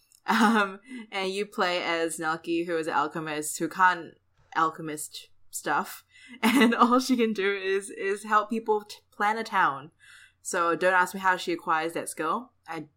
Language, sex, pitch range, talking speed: English, female, 160-210 Hz, 170 wpm